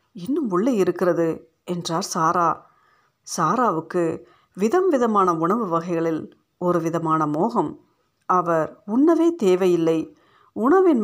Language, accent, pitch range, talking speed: Tamil, native, 165-225 Hz, 85 wpm